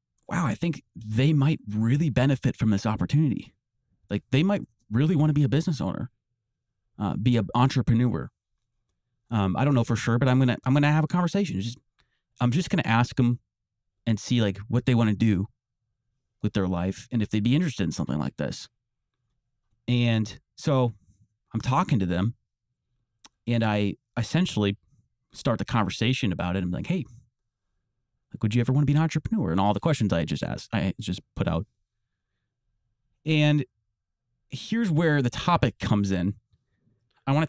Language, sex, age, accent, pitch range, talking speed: English, male, 30-49, American, 110-130 Hz, 180 wpm